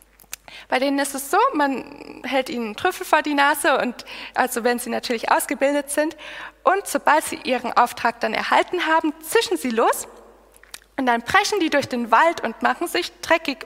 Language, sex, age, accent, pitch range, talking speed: German, female, 20-39, German, 250-325 Hz, 180 wpm